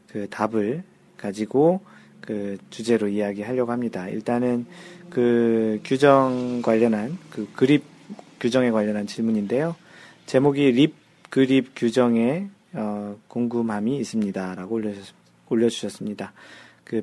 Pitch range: 115-140 Hz